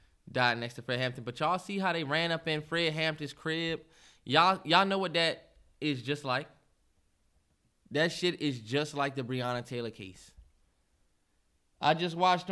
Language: English